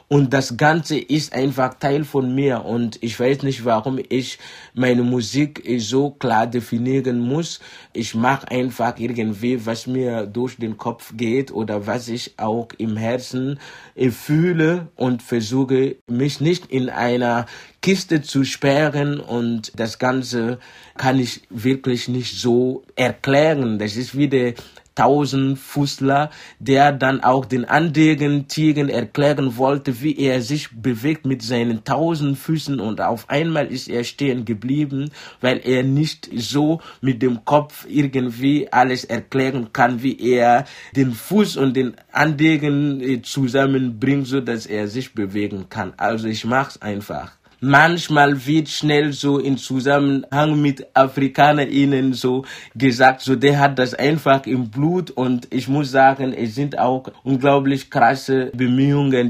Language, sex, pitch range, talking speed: German, male, 125-145 Hz, 140 wpm